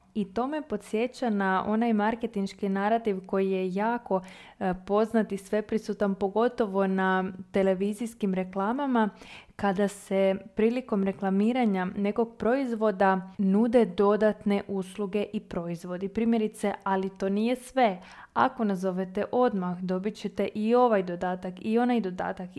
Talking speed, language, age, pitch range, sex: 120 wpm, Croatian, 20-39, 195-230 Hz, female